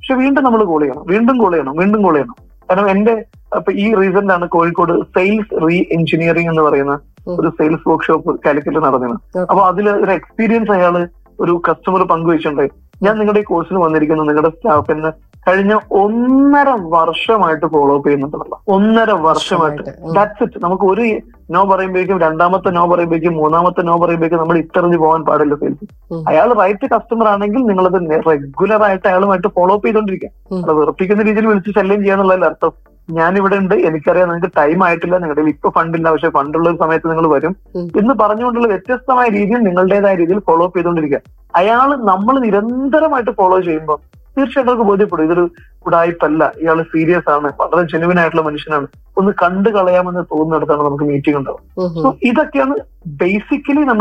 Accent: native